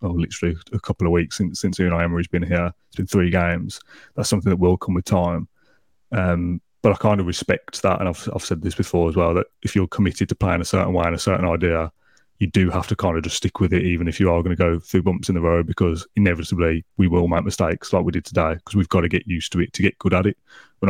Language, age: English, 20-39